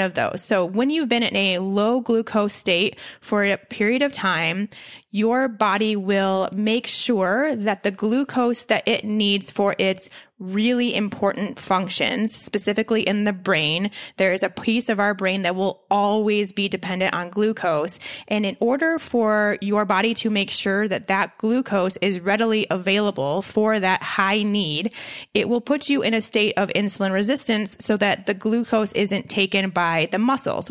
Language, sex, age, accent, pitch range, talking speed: English, female, 20-39, American, 195-225 Hz, 170 wpm